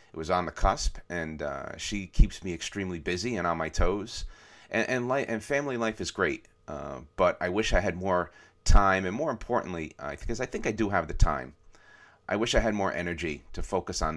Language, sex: English, male